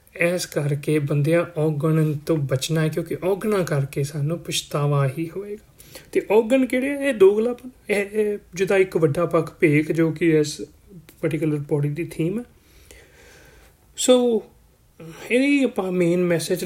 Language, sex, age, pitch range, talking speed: Punjabi, male, 30-49, 160-205 Hz, 130 wpm